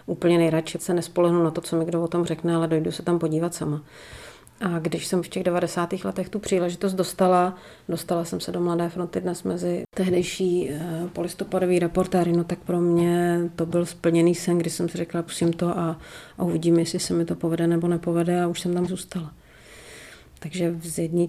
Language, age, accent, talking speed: Czech, 40-59, native, 200 wpm